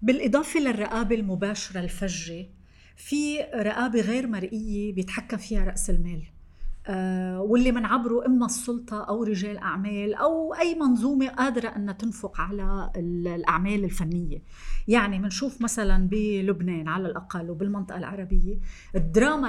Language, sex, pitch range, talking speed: Arabic, female, 190-245 Hz, 115 wpm